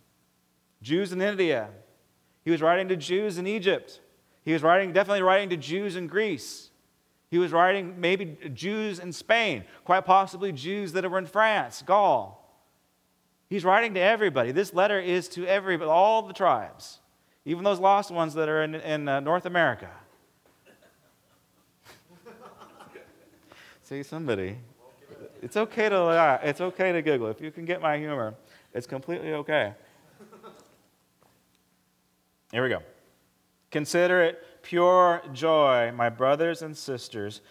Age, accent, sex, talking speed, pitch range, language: 40-59, American, male, 135 wpm, 135-185 Hz, English